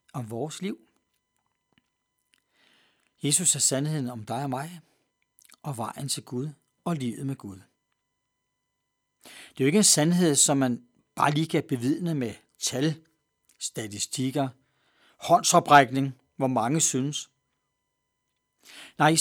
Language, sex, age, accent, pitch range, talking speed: Danish, male, 60-79, native, 125-180 Hz, 120 wpm